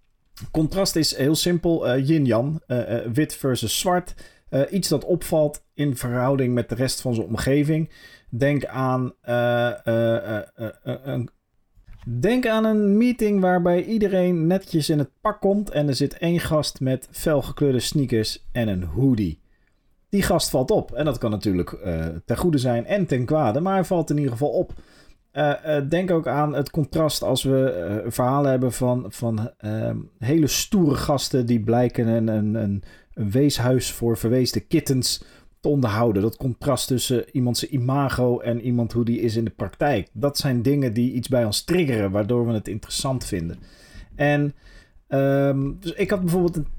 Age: 40-59